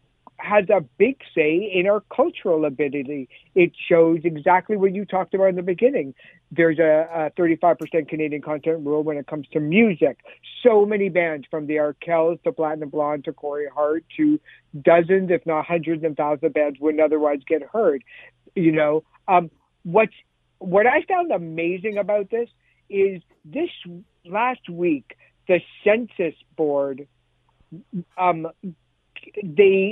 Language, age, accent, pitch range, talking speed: English, 60-79, American, 155-195 Hz, 145 wpm